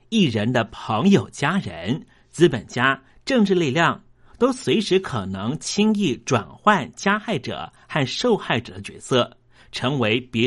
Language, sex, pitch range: Chinese, male, 120-185 Hz